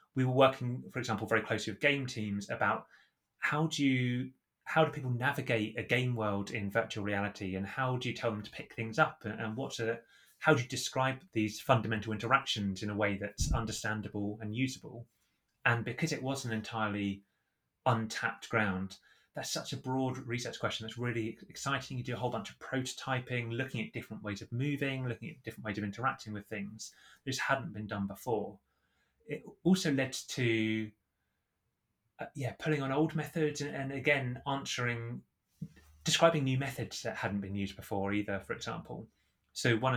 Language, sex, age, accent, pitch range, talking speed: English, male, 20-39, British, 105-130 Hz, 180 wpm